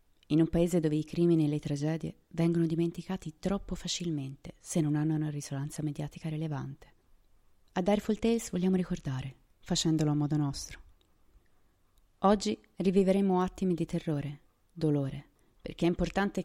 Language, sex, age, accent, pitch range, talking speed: Italian, female, 30-49, native, 150-180 Hz, 140 wpm